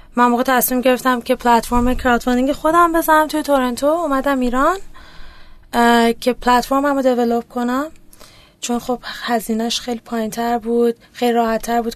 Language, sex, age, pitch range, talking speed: Persian, female, 20-39, 220-250 Hz, 140 wpm